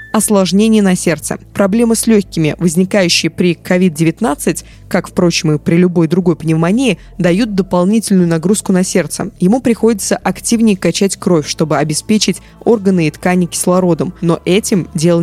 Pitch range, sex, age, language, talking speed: 170-220 Hz, female, 20-39, Russian, 140 wpm